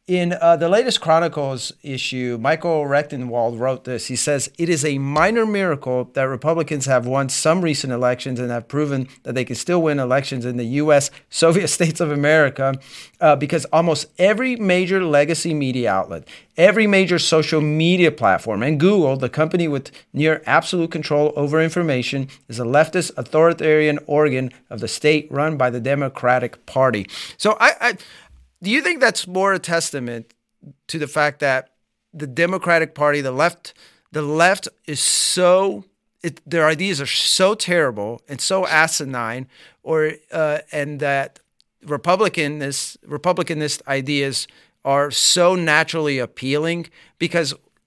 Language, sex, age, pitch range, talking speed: English, male, 30-49, 135-170 Hz, 150 wpm